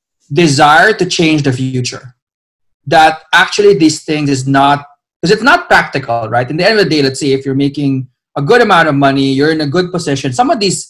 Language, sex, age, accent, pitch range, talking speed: English, male, 20-39, Filipino, 135-180 Hz, 220 wpm